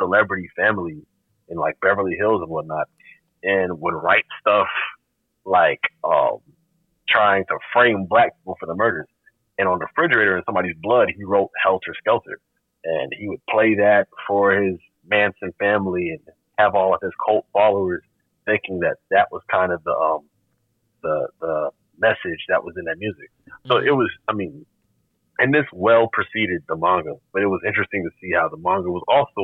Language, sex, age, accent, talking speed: English, male, 30-49, American, 175 wpm